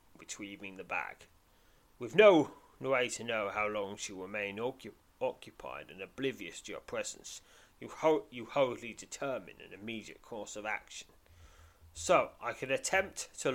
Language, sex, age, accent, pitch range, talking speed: English, male, 30-49, British, 85-135 Hz, 145 wpm